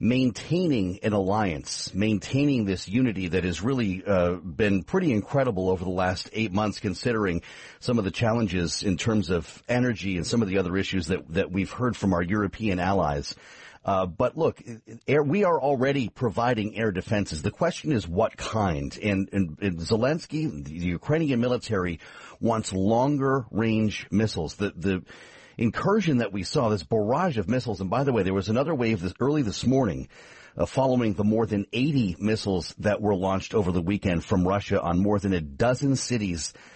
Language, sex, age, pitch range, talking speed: English, male, 40-59, 95-115 Hz, 180 wpm